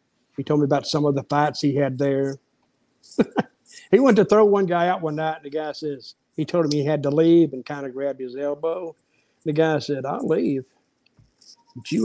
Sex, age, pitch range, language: male, 50-69, 140-165 Hz, English